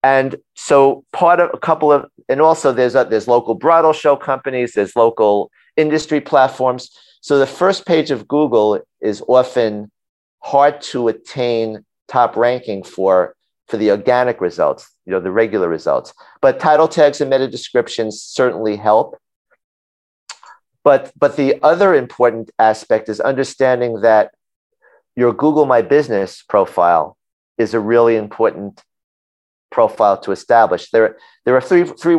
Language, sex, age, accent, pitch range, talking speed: English, male, 40-59, American, 110-140 Hz, 145 wpm